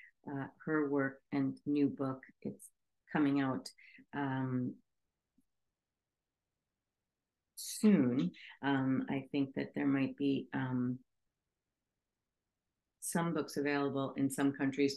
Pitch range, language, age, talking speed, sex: 135-150 Hz, English, 50-69, 100 wpm, female